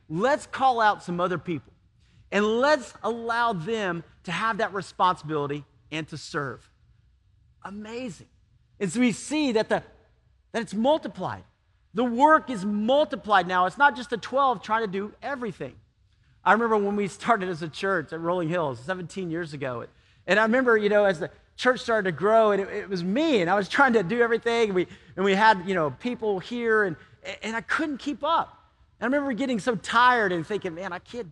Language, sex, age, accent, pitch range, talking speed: English, male, 40-59, American, 165-230 Hz, 200 wpm